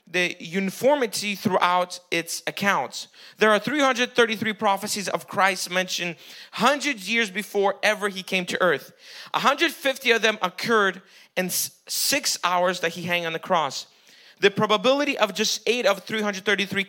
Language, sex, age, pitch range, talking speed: English, male, 30-49, 175-220 Hz, 140 wpm